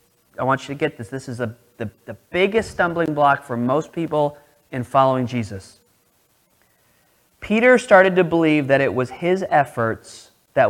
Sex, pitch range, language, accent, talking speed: male, 125-160 Hz, English, American, 165 wpm